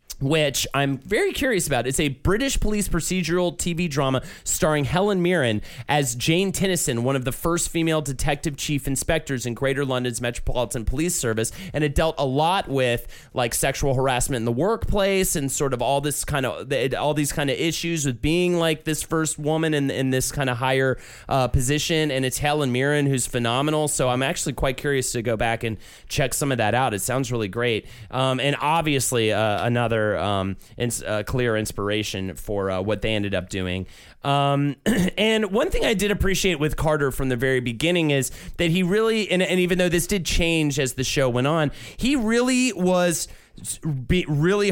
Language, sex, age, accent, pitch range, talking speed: English, male, 30-49, American, 125-165 Hz, 190 wpm